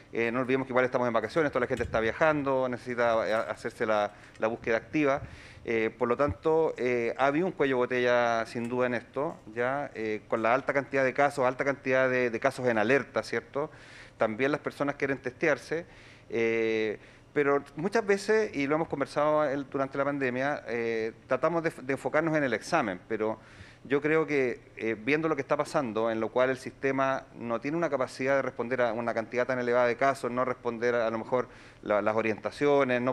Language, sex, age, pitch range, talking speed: Spanish, male, 40-59, 115-145 Hz, 200 wpm